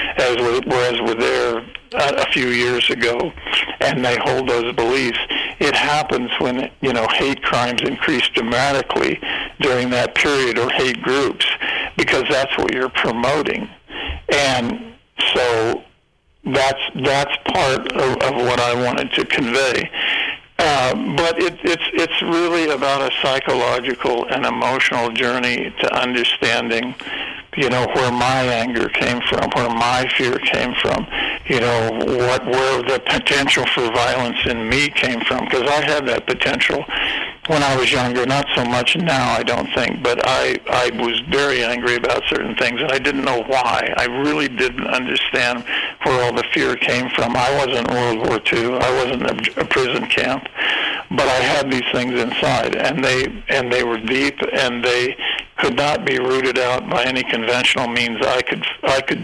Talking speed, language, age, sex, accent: 165 wpm, English, 50-69, male, American